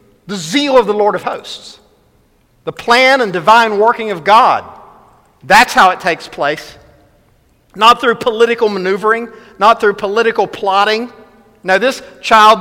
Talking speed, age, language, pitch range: 145 wpm, 50-69, English, 180-235 Hz